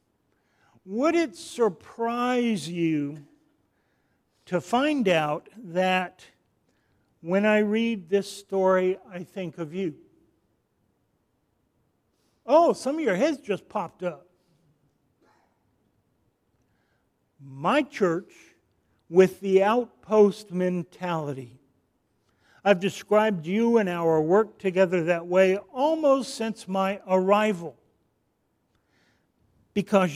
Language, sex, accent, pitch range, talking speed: English, male, American, 170-220 Hz, 90 wpm